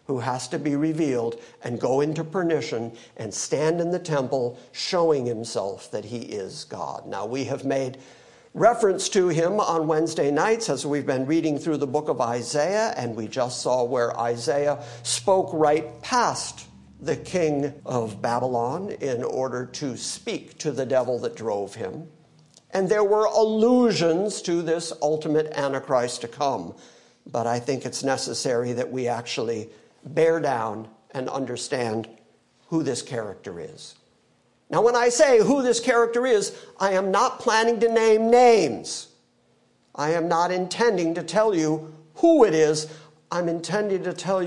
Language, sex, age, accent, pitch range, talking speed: English, male, 50-69, American, 125-175 Hz, 160 wpm